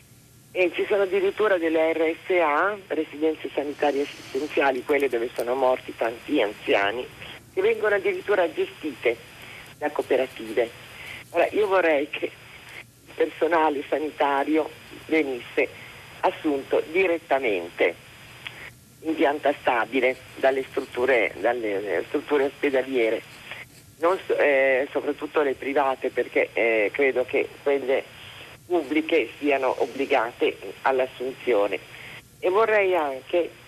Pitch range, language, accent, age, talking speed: 135-170 Hz, Italian, native, 50-69, 100 wpm